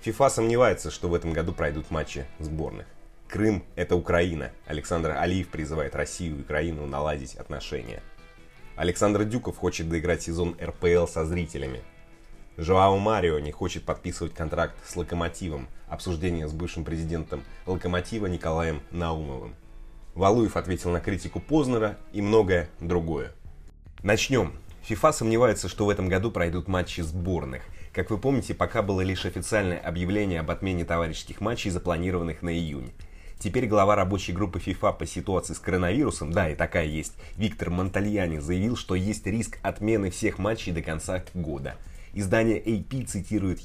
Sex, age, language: male, 30-49, Russian